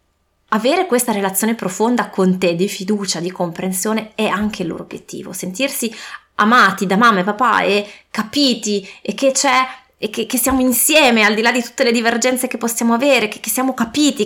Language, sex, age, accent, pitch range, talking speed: Italian, female, 20-39, native, 200-260 Hz, 190 wpm